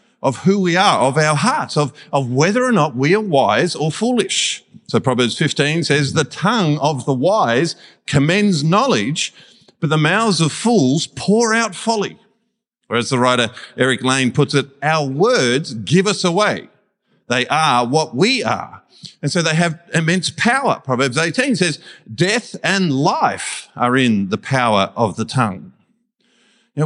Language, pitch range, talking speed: English, 140-210 Hz, 165 wpm